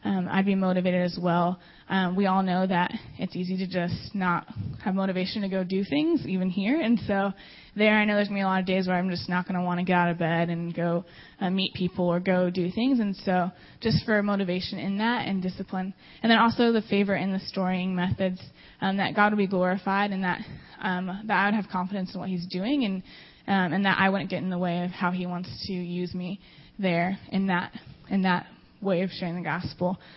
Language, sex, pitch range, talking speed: English, female, 180-200 Hz, 240 wpm